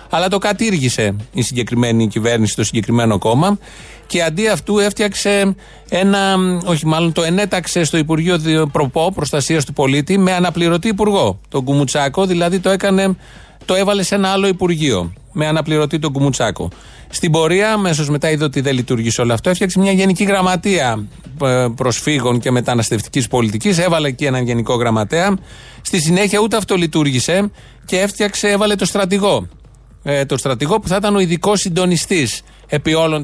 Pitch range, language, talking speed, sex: 130-190 Hz, Greek, 155 wpm, male